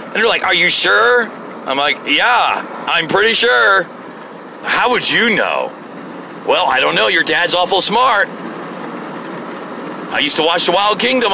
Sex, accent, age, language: male, American, 40-59, English